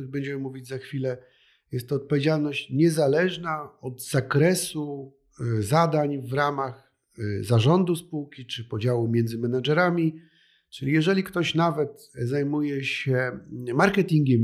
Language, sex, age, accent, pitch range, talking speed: Polish, male, 50-69, native, 130-165 Hz, 110 wpm